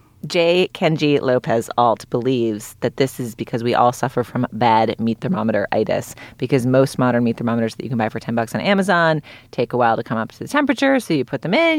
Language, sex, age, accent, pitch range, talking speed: English, female, 30-49, American, 115-150 Hz, 220 wpm